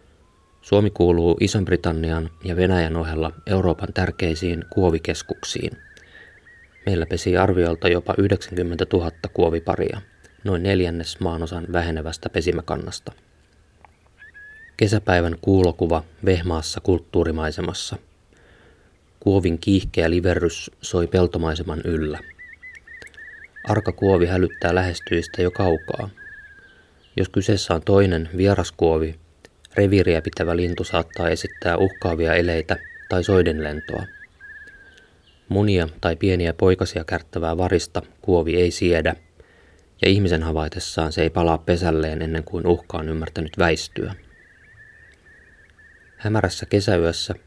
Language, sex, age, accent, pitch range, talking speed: Finnish, male, 20-39, native, 80-95 Hz, 95 wpm